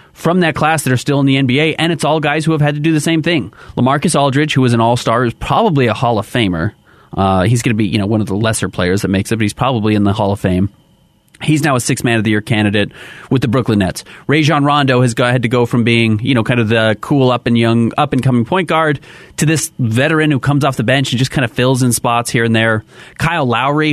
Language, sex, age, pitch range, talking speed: English, male, 30-49, 110-140 Hz, 285 wpm